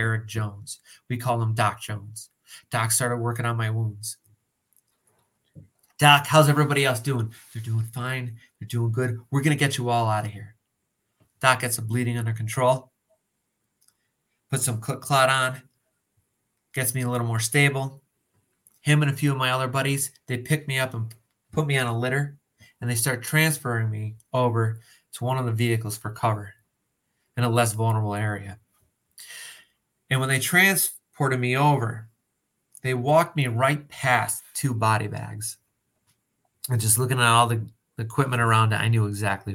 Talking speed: 170 wpm